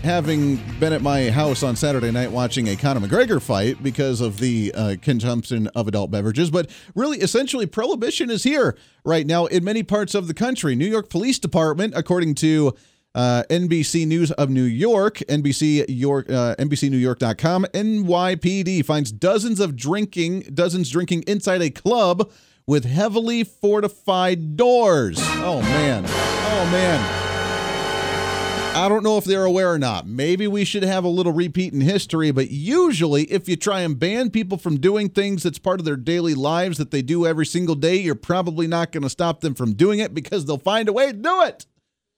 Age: 40-59